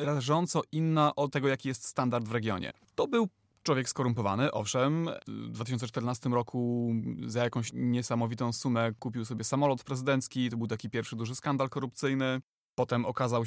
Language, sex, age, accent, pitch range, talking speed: Polish, male, 30-49, native, 115-130 Hz, 150 wpm